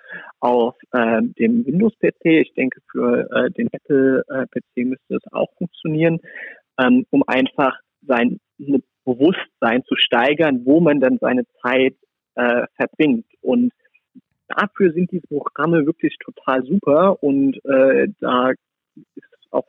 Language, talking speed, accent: German, 125 wpm, German